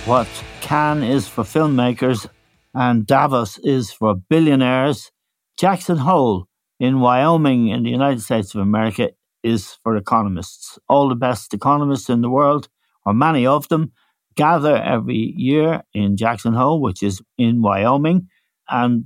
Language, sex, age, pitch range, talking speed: English, male, 60-79, 105-130 Hz, 140 wpm